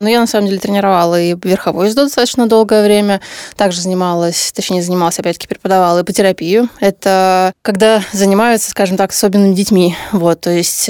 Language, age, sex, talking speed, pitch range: Russian, 20-39, female, 170 wpm, 185-215 Hz